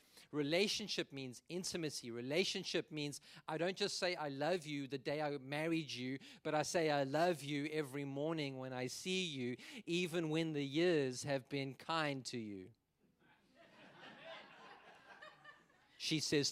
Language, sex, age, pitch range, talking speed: English, male, 40-59, 130-175 Hz, 145 wpm